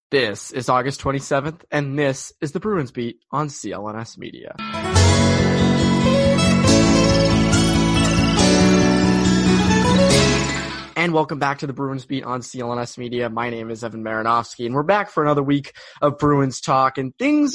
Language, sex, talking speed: English, male, 135 wpm